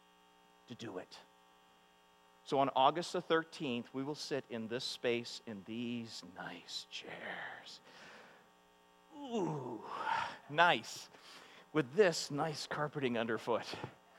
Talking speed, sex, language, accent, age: 105 wpm, male, English, American, 50-69